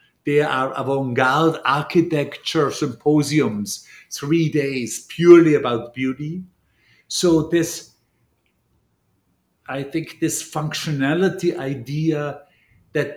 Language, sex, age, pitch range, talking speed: English, male, 50-69, 135-165 Hz, 80 wpm